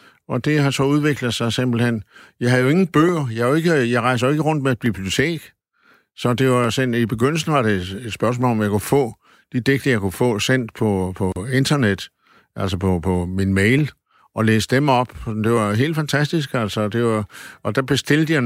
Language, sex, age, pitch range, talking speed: Danish, male, 60-79, 105-135 Hz, 210 wpm